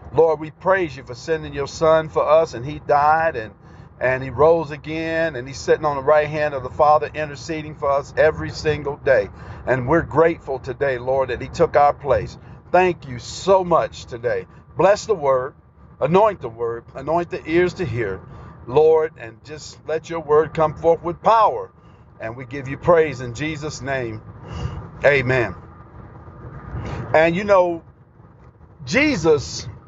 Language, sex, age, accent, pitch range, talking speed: English, male, 50-69, American, 135-180 Hz, 165 wpm